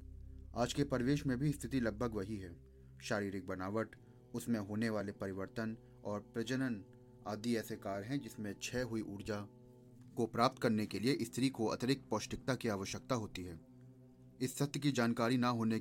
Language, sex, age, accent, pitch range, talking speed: Hindi, male, 30-49, native, 100-125 Hz, 165 wpm